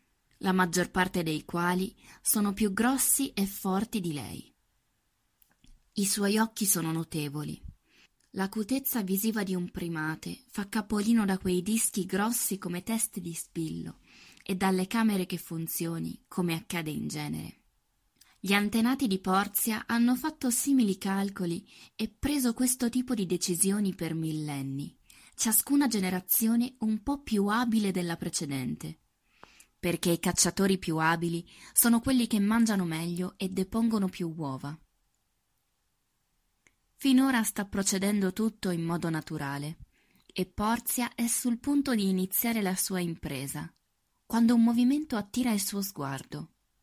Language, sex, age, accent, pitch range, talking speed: Italian, female, 20-39, native, 165-225 Hz, 130 wpm